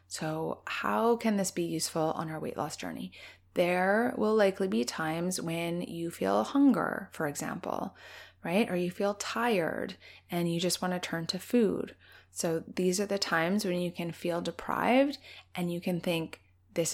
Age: 20-39